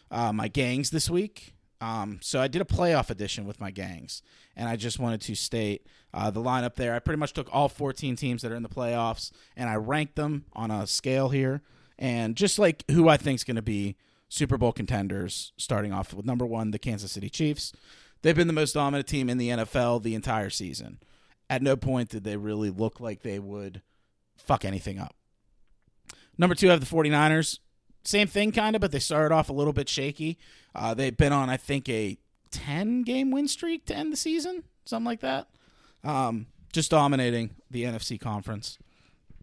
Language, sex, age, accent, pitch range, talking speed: English, male, 30-49, American, 110-150 Hz, 200 wpm